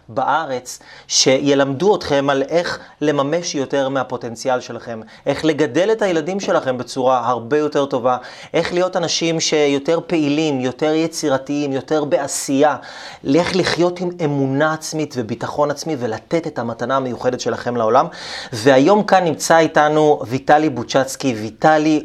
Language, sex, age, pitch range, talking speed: Hebrew, male, 30-49, 135-160 Hz, 130 wpm